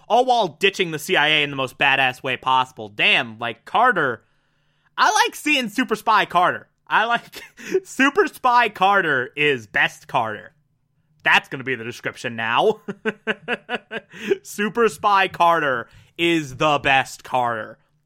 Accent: American